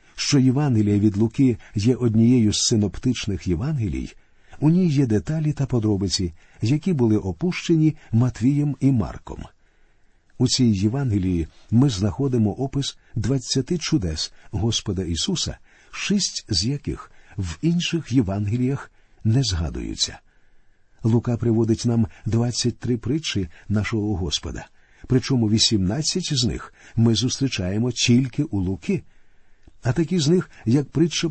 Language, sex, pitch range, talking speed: Ukrainian, male, 105-140 Hz, 115 wpm